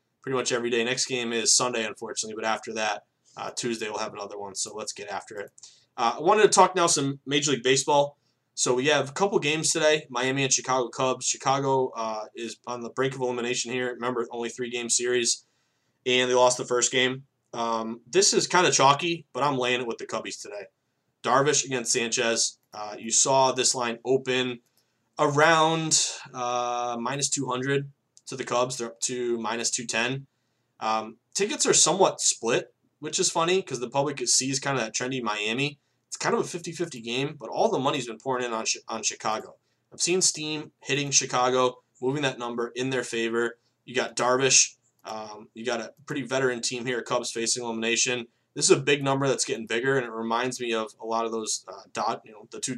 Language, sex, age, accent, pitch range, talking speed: English, male, 20-39, American, 120-135 Hz, 200 wpm